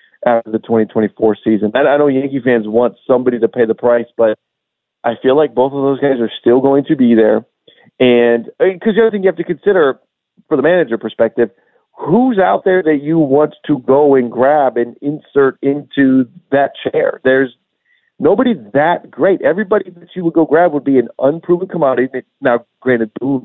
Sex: male